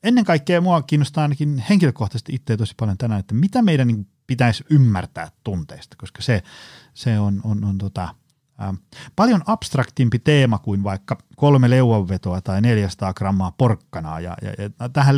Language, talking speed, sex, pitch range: Finnish, 155 wpm, male, 105-140 Hz